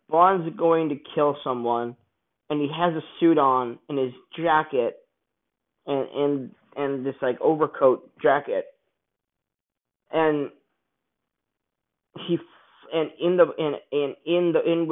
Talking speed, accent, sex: 120 wpm, American, male